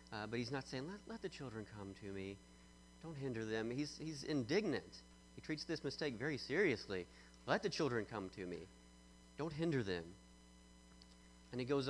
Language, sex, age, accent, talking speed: English, male, 40-59, American, 180 wpm